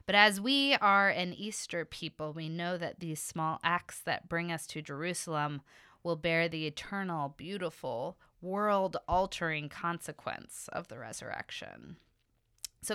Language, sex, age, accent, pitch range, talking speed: English, female, 20-39, American, 155-200 Hz, 140 wpm